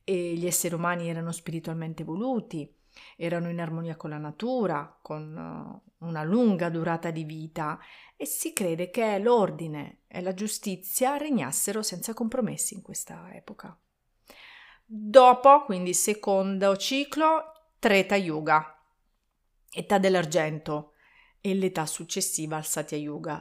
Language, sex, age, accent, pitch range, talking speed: Italian, female, 40-59, native, 165-220 Hz, 120 wpm